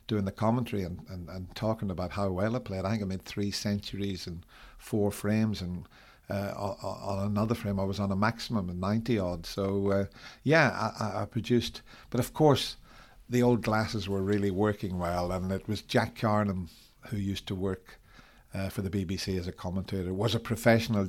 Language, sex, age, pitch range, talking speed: English, male, 60-79, 100-115 Hz, 200 wpm